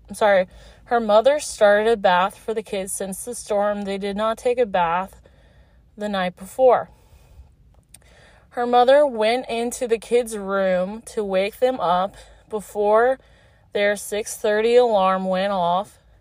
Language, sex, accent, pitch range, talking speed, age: English, female, American, 185-230 Hz, 150 wpm, 20-39